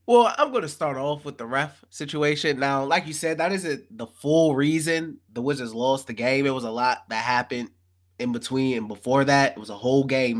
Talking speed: 230 wpm